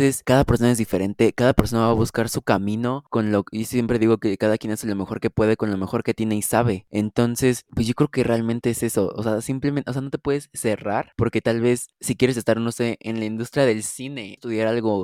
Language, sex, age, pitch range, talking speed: Spanish, male, 20-39, 110-125 Hz, 245 wpm